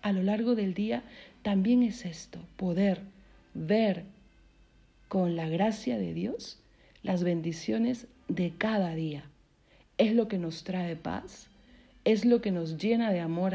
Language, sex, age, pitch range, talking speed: Spanish, female, 50-69, 170-220 Hz, 145 wpm